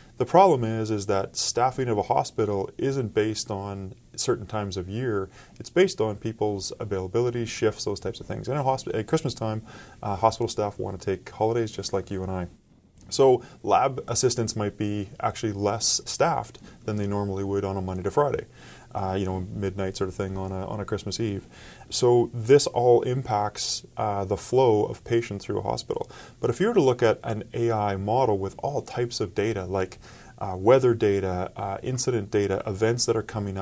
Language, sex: English, male